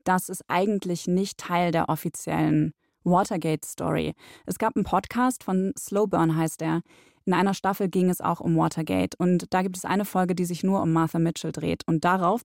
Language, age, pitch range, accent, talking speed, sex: German, 20-39, 170-200 Hz, German, 190 wpm, female